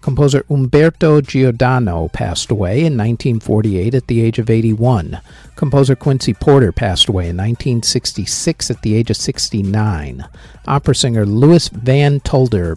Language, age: English, 50-69